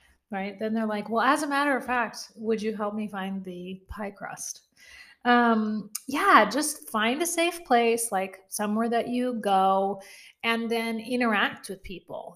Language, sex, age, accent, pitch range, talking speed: English, female, 30-49, American, 215-270 Hz, 170 wpm